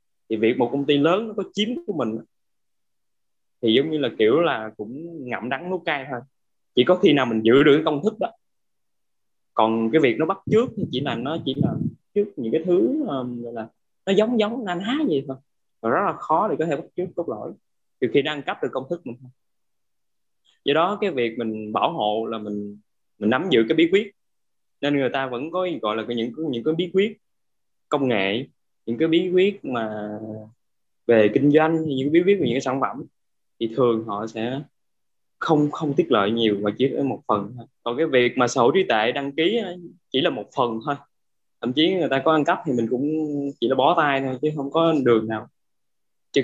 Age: 20-39